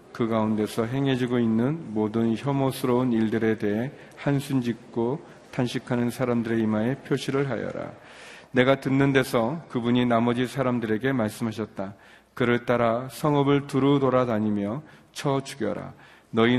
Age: 40-59